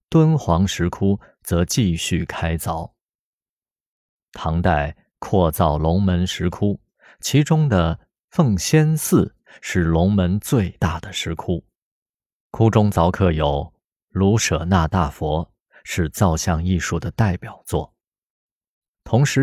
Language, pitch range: Chinese, 85-110 Hz